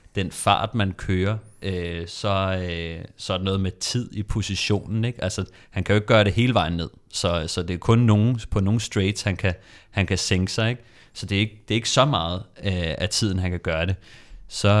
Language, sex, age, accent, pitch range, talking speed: Danish, male, 30-49, native, 90-105 Hz, 235 wpm